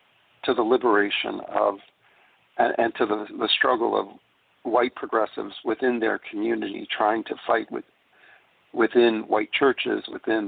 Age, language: 50-69, English